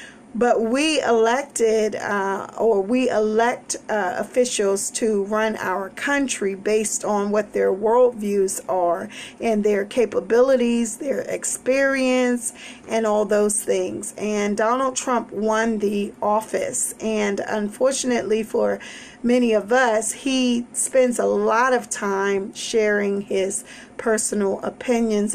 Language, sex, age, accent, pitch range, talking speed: English, female, 40-59, American, 210-245 Hz, 120 wpm